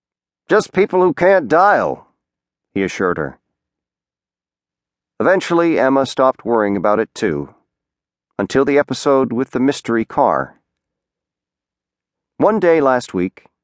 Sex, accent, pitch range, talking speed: male, American, 80-130 Hz, 115 wpm